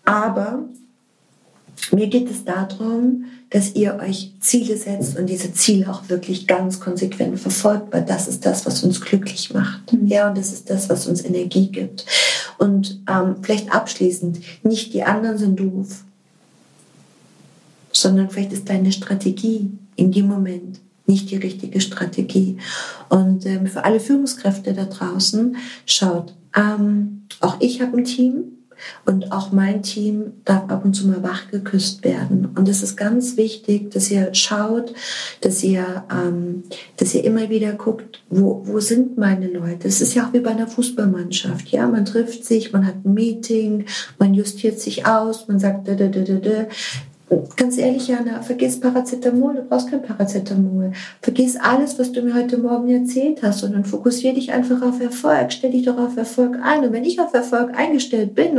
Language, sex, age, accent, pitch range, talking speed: German, female, 50-69, German, 195-245 Hz, 165 wpm